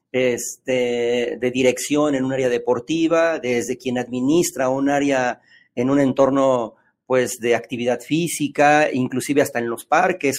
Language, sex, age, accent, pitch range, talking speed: English, male, 40-59, Mexican, 130-160 Hz, 135 wpm